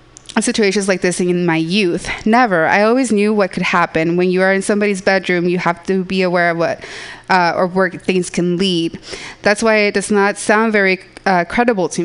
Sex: female